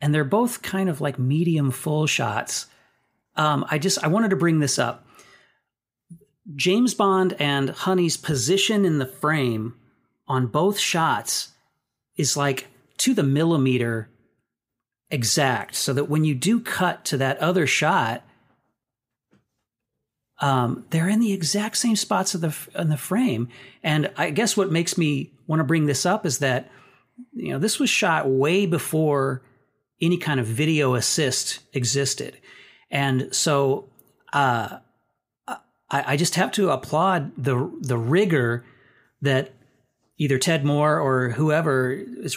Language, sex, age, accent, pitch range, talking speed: English, male, 40-59, American, 130-175 Hz, 145 wpm